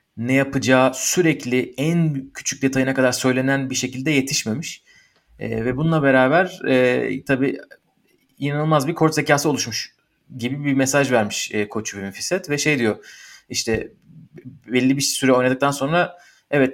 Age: 30-49